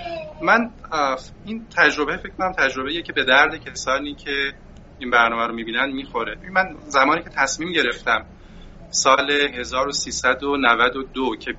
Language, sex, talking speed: Persian, male, 125 wpm